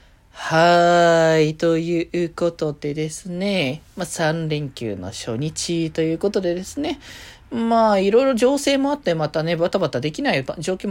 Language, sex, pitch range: Japanese, male, 135-185 Hz